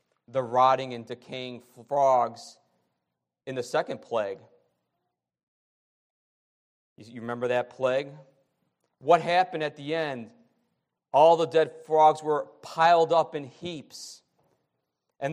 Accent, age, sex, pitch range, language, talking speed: American, 40-59, male, 125-165 Hz, English, 110 wpm